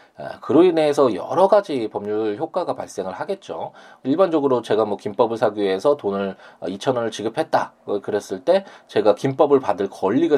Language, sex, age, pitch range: Korean, male, 20-39, 100-145 Hz